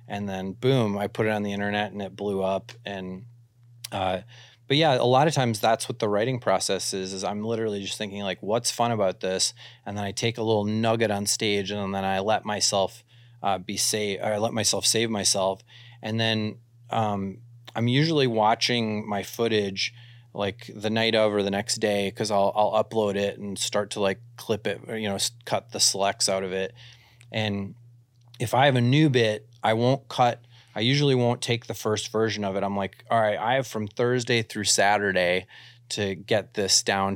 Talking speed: 205 wpm